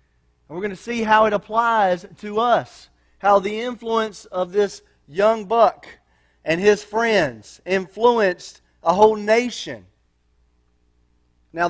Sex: male